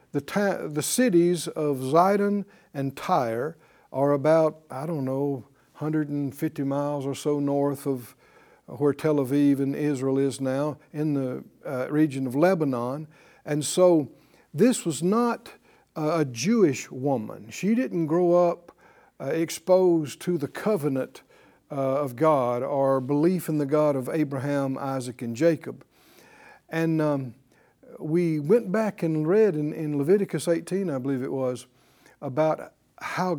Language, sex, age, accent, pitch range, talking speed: English, male, 60-79, American, 135-165 Hz, 140 wpm